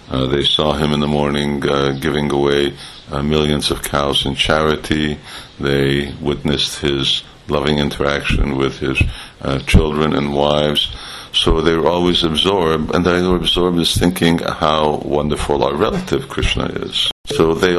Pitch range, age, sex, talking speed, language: 70-80 Hz, 50-69, male, 155 wpm, English